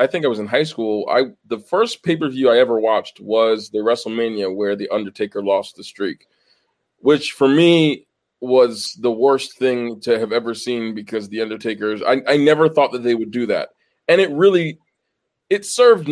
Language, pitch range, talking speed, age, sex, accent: English, 110-135 Hz, 185 wpm, 20-39, male, American